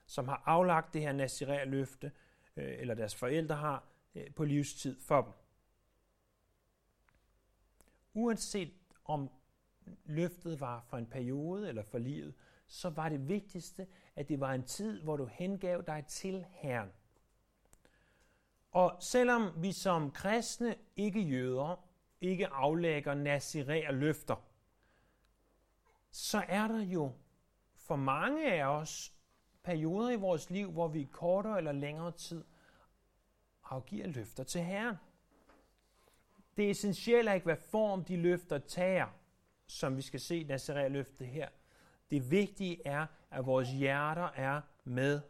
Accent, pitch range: native, 135-185 Hz